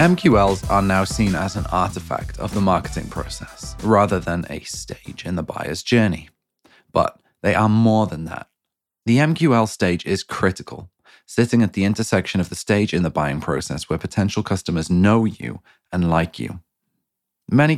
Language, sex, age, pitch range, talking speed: English, male, 30-49, 85-110 Hz, 170 wpm